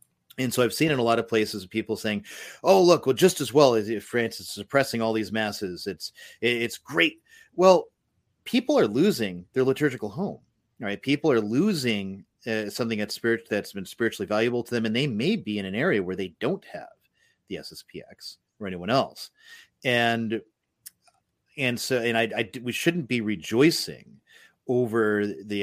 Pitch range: 105-135 Hz